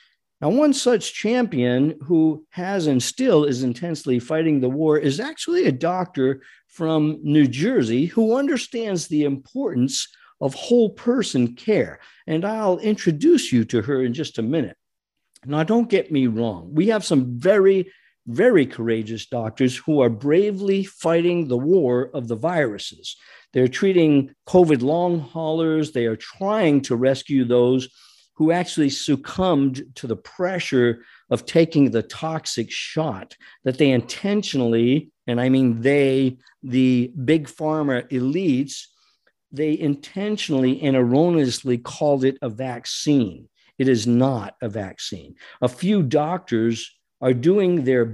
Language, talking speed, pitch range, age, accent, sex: English, 135 wpm, 125-170 Hz, 50-69, American, male